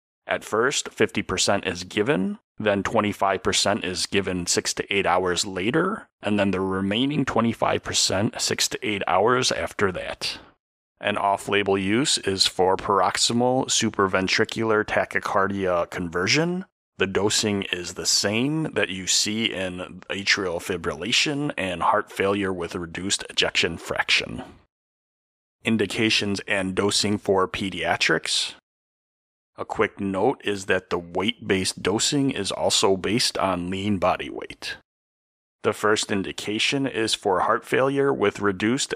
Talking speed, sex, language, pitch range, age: 125 wpm, male, English, 95-115 Hz, 30-49